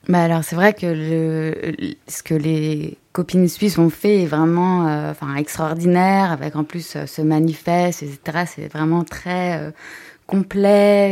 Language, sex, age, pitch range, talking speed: French, female, 20-39, 155-180 Hz, 160 wpm